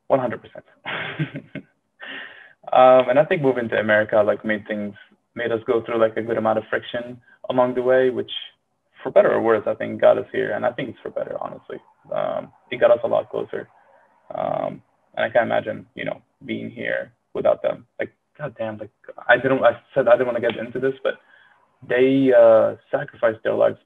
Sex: male